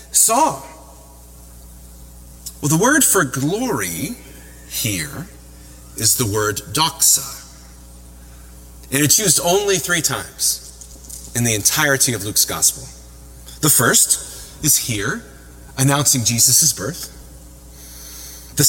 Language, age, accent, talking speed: English, 40-59, American, 100 wpm